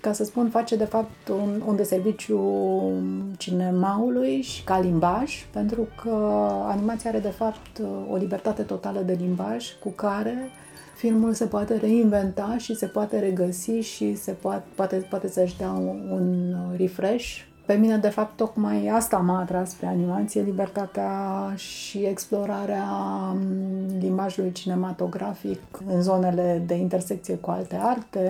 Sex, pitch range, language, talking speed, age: female, 175-215 Hz, Romanian, 140 wpm, 30-49